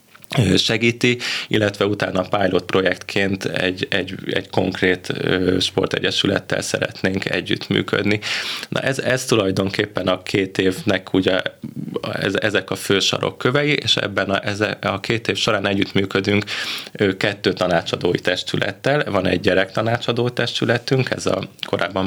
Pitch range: 95-110 Hz